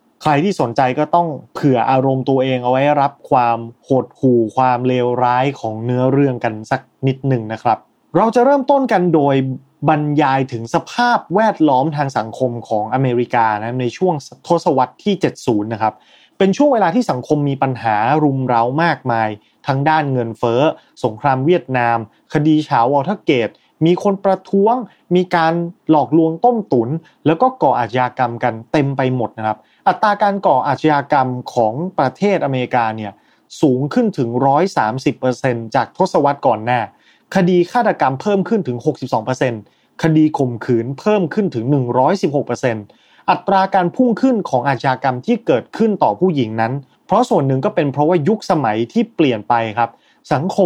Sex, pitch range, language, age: male, 125-170 Hz, Thai, 20-39